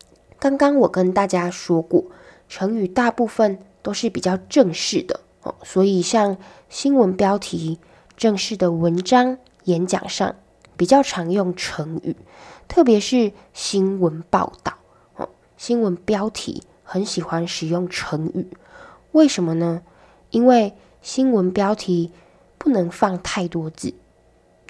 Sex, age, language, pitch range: female, 10-29, Chinese, 175-220 Hz